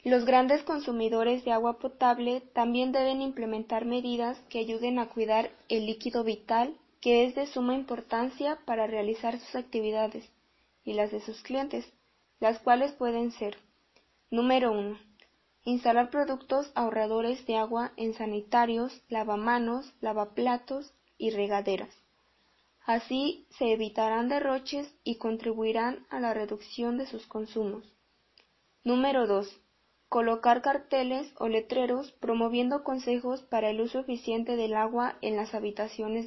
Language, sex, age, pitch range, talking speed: Spanish, female, 20-39, 220-255 Hz, 125 wpm